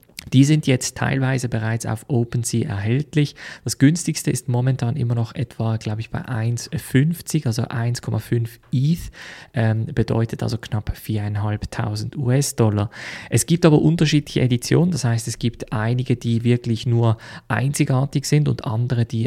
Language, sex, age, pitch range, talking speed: German, male, 20-39, 110-130 Hz, 145 wpm